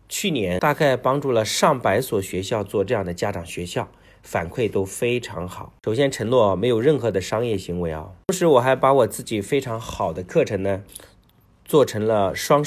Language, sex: Chinese, male